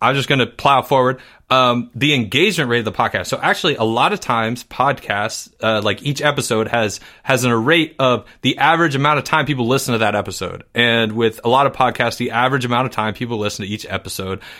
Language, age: English, 30-49